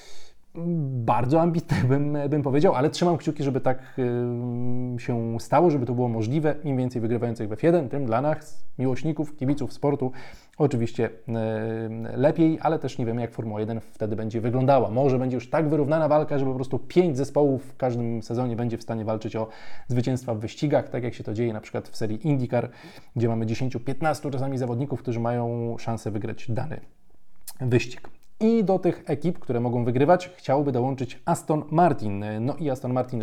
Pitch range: 115-150 Hz